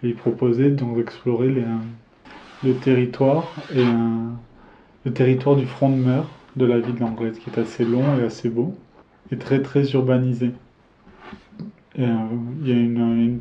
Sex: male